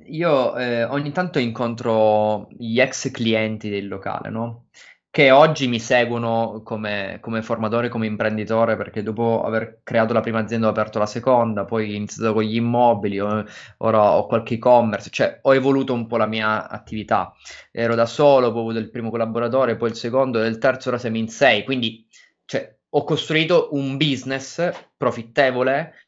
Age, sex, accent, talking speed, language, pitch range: 20-39, male, native, 170 wpm, Italian, 110-135 Hz